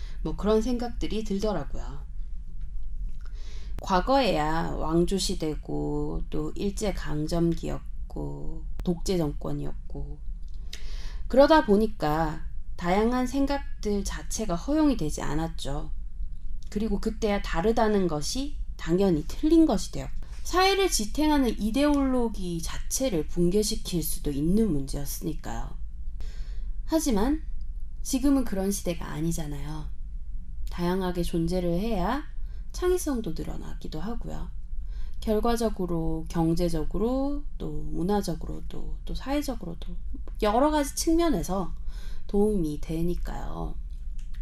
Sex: female